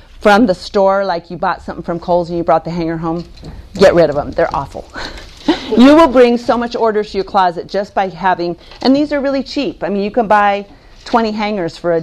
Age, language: 40-59, English